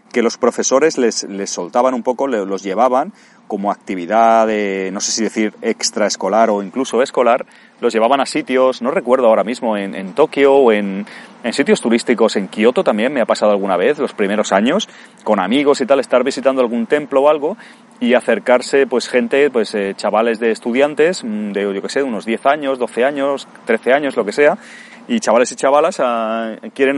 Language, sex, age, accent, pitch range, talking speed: Spanish, male, 30-49, Spanish, 115-170 Hz, 195 wpm